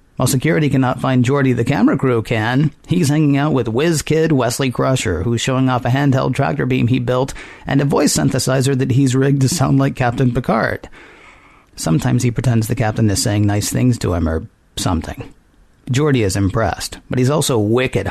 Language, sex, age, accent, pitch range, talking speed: English, male, 40-59, American, 115-135 Hz, 190 wpm